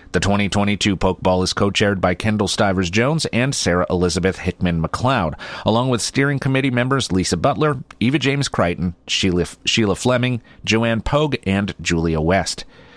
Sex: male